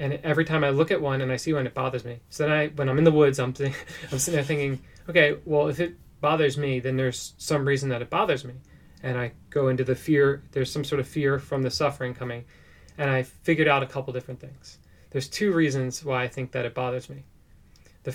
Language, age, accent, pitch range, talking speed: English, 30-49, American, 125-145 Hz, 245 wpm